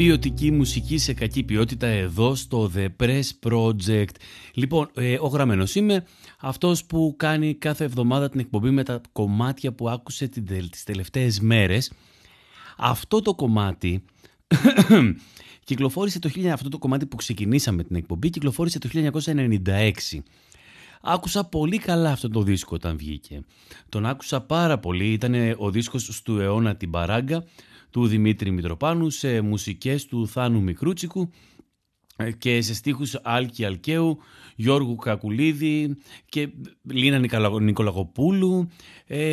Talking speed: 115 wpm